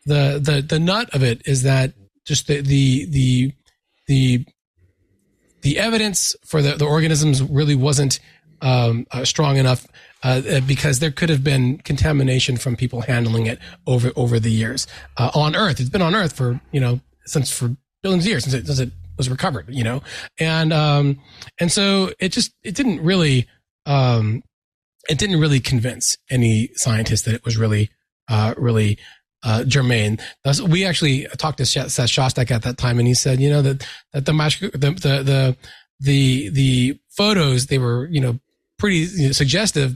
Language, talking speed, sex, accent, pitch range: English, 170 wpm, male, American, 120-155 Hz